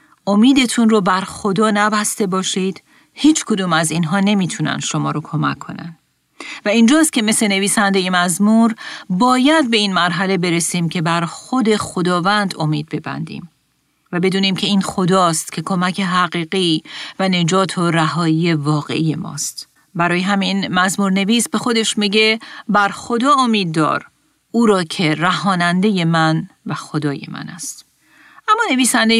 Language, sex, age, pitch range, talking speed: Persian, female, 40-59, 170-215 Hz, 140 wpm